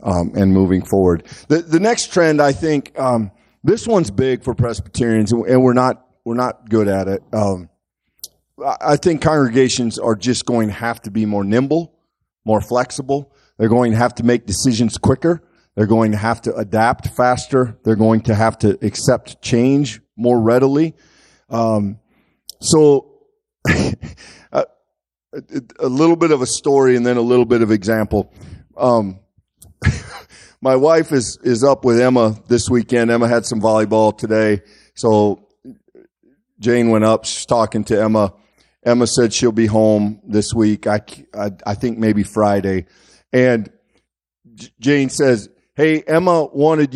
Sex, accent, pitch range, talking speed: male, American, 110-135 Hz, 155 wpm